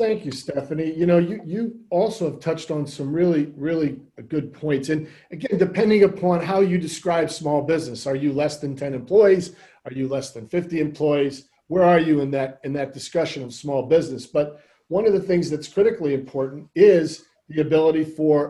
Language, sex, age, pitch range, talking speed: English, male, 40-59, 140-175 Hz, 195 wpm